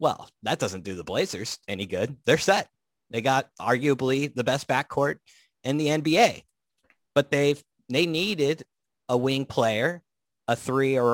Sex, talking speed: male, 155 wpm